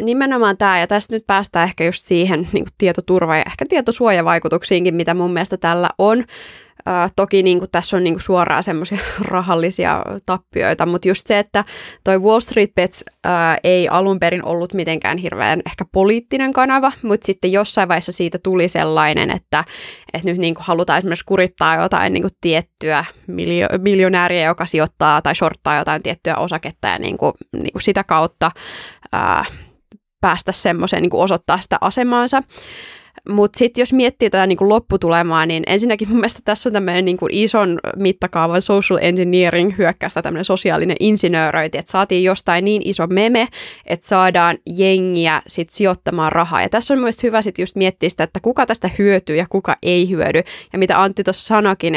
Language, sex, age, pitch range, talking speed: Finnish, female, 20-39, 170-205 Hz, 150 wpm